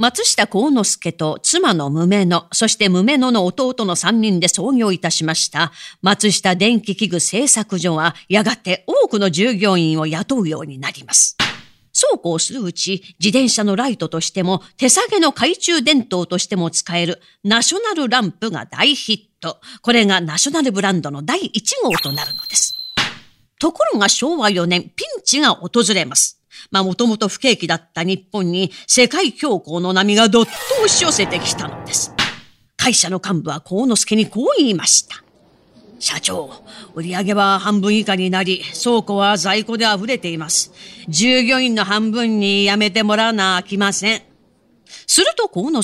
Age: 40-59